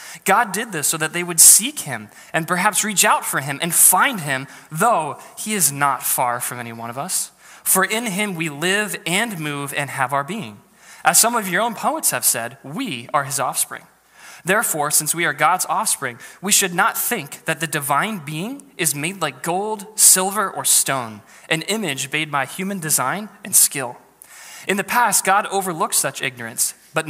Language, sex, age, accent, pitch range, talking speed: English, male, 20-39, American, 145-205 Hz, 195 wpm